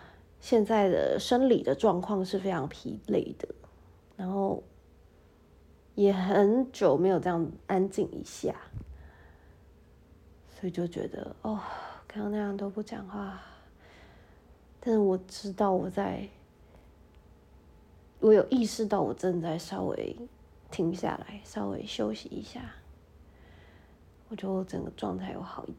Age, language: 30-49, Chinese